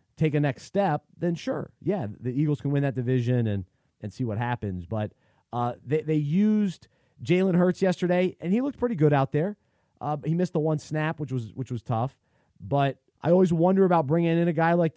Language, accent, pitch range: English, American, 125-165 Hz